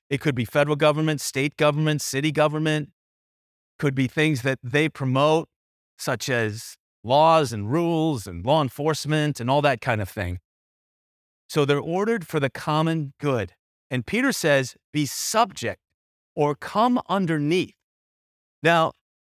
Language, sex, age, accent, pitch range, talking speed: English, male, 30-49, American, 120-165 Hz, 140 wpm